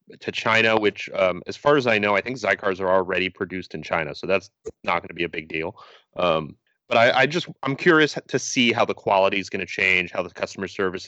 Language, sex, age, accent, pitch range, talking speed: English, male, 30-49, American, 90-110 Hz, 250 wpm